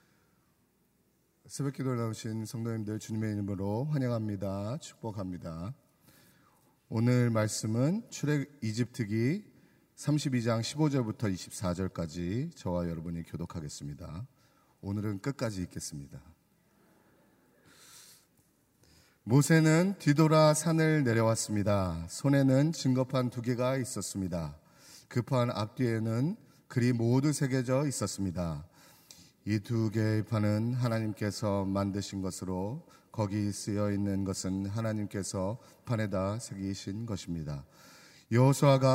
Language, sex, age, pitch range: Korean, male, 40-59, 95-130 Hz